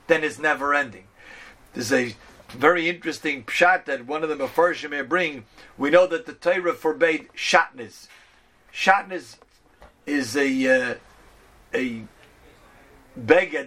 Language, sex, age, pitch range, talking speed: English, male, 40-59, 145-185 Hz, 125 wpm